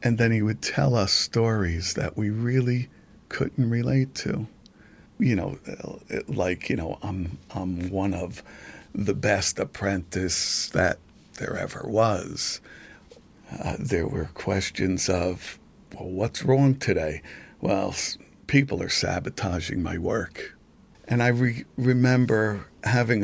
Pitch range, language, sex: 90-115 Hz, English, male